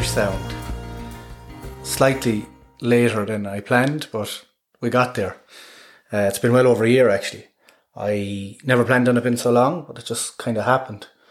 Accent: Irish